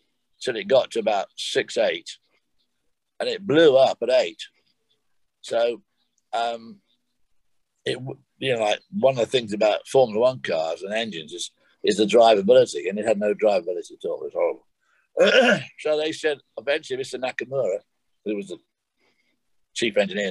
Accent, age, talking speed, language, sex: British, 60-79, 155 wpm, English, male